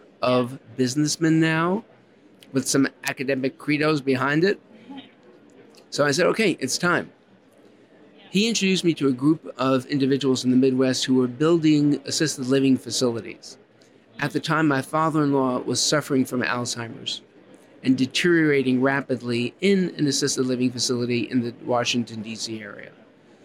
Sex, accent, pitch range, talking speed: male, American, 125-155 Hz, 140 wpm